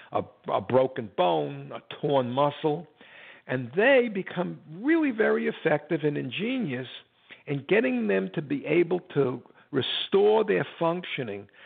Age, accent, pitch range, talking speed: 60-79, American, 120-165 Hz, 125 wpm